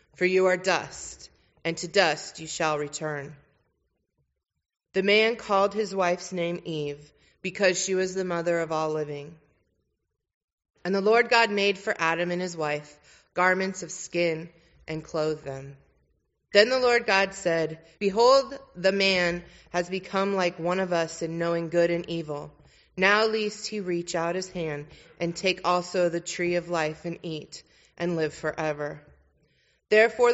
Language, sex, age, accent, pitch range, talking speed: English, female, 30-49, American, 155-190 Hz, 160 wpm